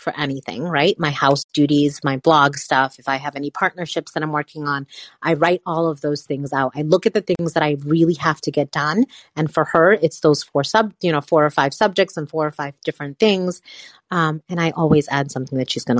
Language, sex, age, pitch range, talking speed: English, female, 30-49, 145-190 Hz, 245 wpm